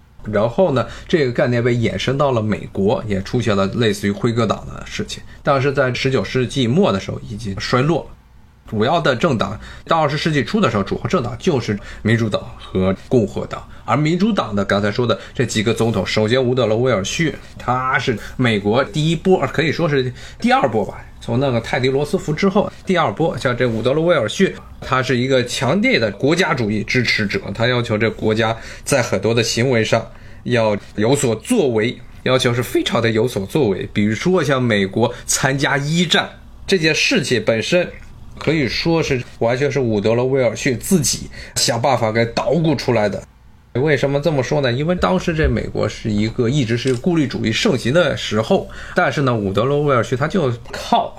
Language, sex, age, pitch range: Chinese, male, 20-39, 110-140 Hz